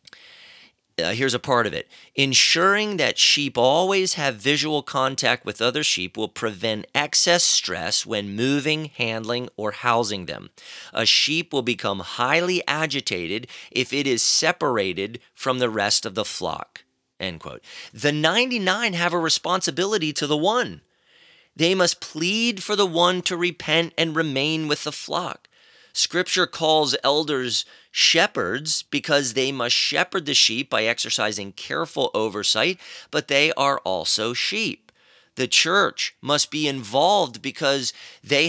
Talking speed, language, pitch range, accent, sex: 140 wpm, English, 120-175 Hz, American, male